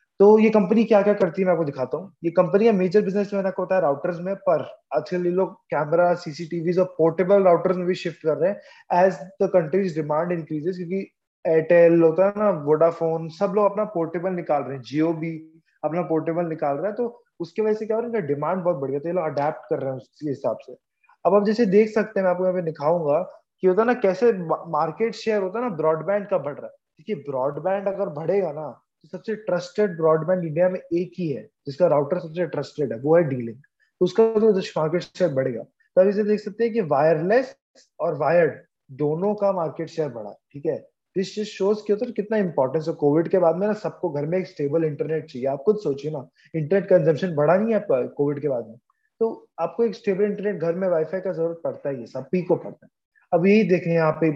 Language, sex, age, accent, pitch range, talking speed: Hindi, male, 20-39, native, 155-200 Hz, 215 wpm